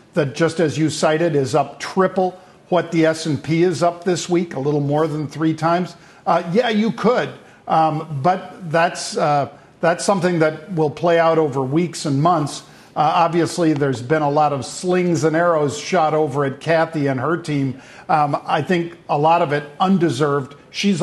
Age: 50-69